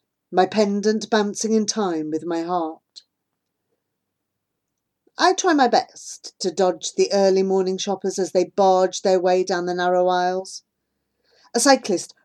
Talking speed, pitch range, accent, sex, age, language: 140 wpm, 180-255 Hz, British, female, 40-59, English